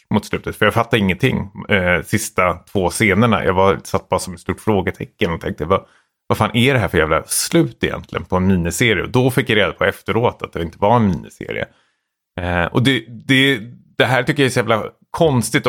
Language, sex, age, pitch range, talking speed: Swedish, male, 30-49, 95-130 Hz, 220 wpm